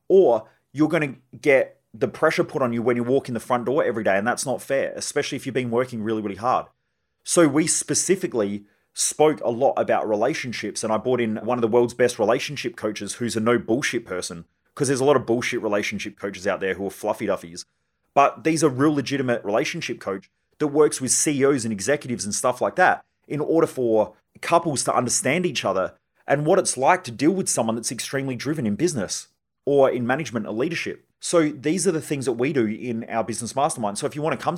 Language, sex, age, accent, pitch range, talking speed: English, male, 30-49, Australian, 115-155 Hz, 225 wpm